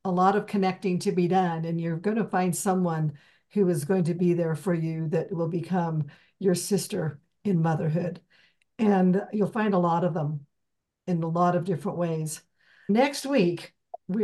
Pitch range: 185-220 Hz